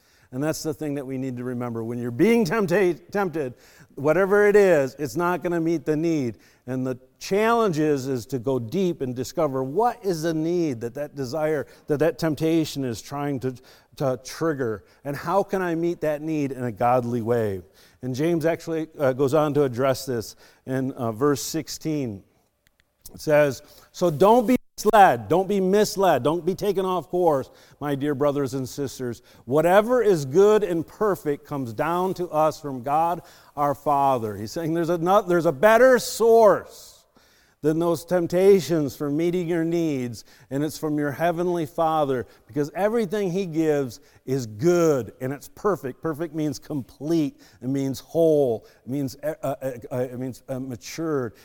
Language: English